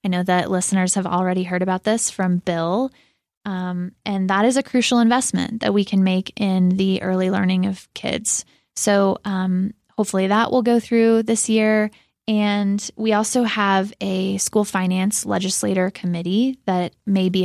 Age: 20-39